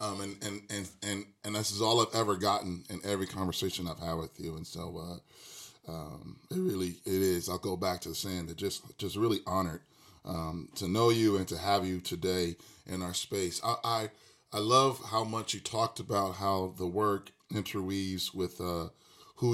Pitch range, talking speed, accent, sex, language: 90-105 Hz, 205 wpm, American, male, English